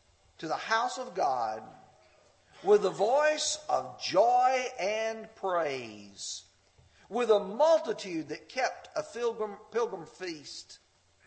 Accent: American